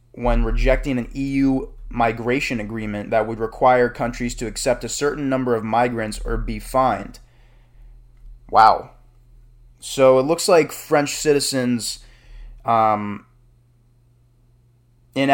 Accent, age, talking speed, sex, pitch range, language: American, 20-39, 115 wpm, male, 115-130 Hz, English